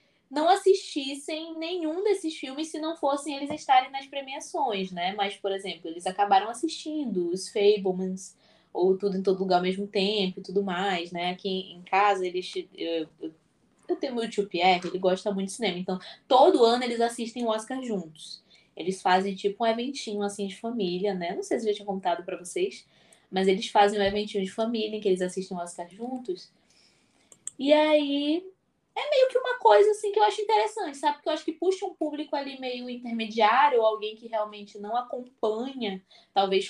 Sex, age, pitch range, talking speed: female, 10-29, 195-285 Hz, 195 wpm